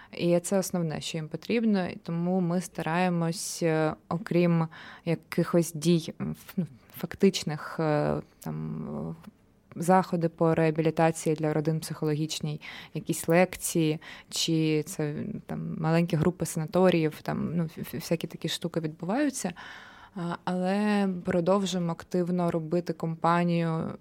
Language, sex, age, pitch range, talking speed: Ukrainian, female, 20-39, 160-180 Hz, 95 wpm